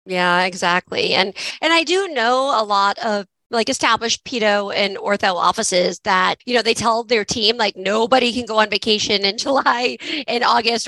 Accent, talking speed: American, 180 wpm